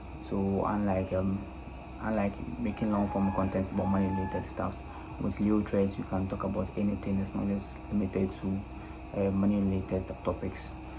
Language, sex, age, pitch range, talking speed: English, male, 20-39, 90-100 Hz, 155 wpm